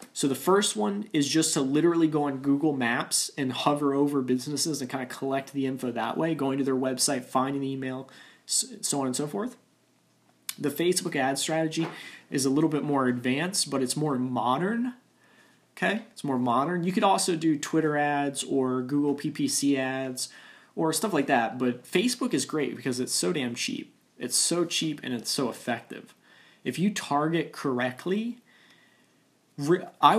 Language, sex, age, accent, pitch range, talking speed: English, male, 20-39, American, 130-160 Hz, 175 wpm